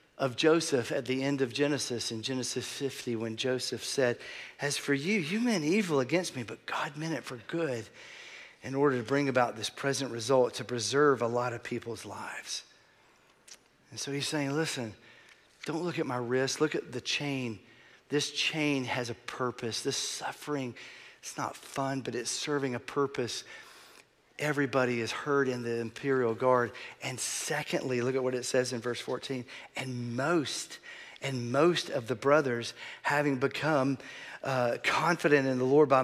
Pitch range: 125-155 Hz